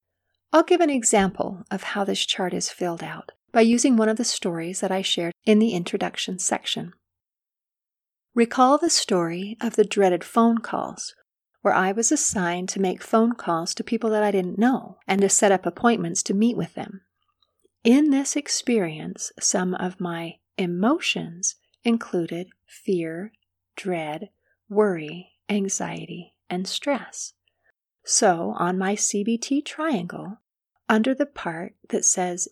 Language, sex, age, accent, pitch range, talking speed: English, female, 40-59, American, 175-235 Hz, 145 wpm